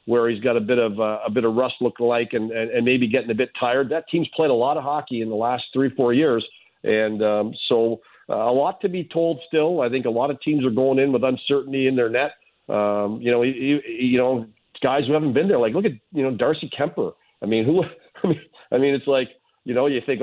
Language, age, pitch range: English, 50-69, 120-145 Hz